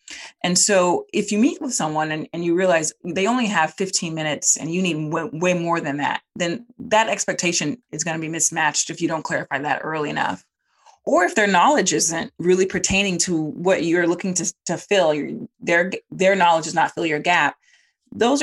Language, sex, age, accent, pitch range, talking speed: English, female, 30-49, American, 160-205 Hz, 200 wpm